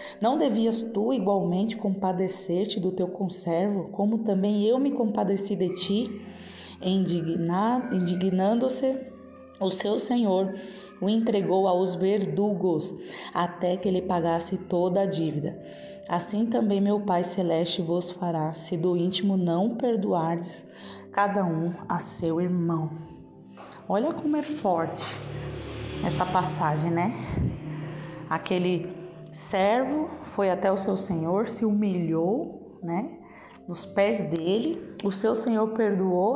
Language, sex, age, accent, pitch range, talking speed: Portuguese, female, 20-39, Brazilian, 175-205 Hz, 120 wpm